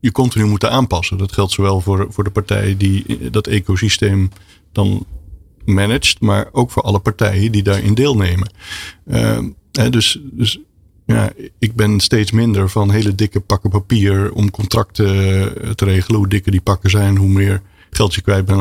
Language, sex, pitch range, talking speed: Dutch, male, 95-110 Hz, 170 wpm